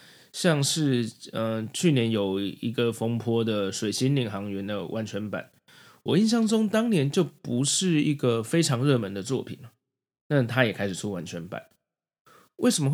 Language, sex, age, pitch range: Chinese, male, 20-39, 105-140 Hz